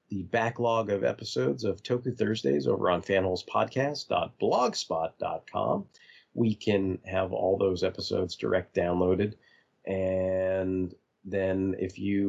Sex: male